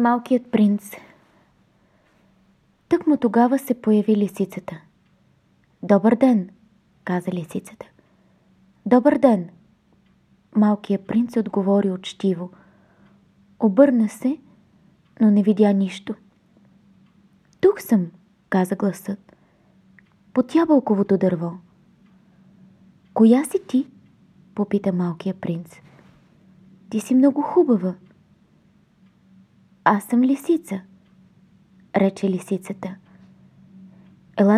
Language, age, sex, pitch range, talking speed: Bulgarian, 20-39, female, 190-230 Hz, 80 wpm